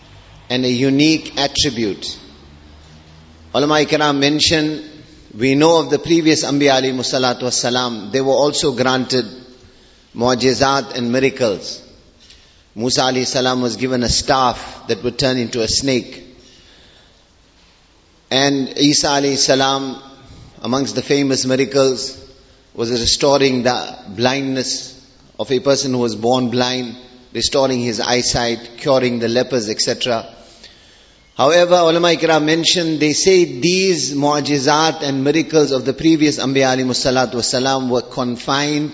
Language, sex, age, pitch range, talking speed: Finnish, male, 30-49, 120-145 Hz, 125 wpm